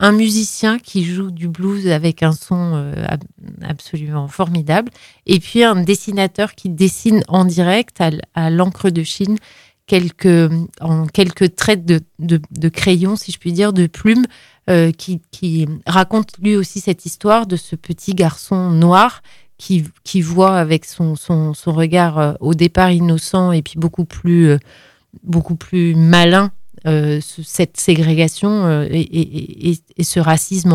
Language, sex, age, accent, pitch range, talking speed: French, female, 30-49, French, 165-195 Hz, 155 wpm